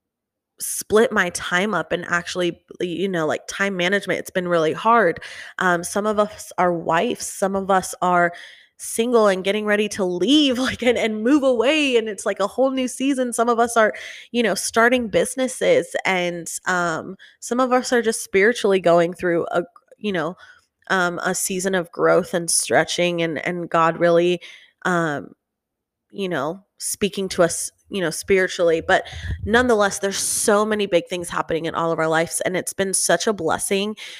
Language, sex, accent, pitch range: English, female, American, 170-210 Hz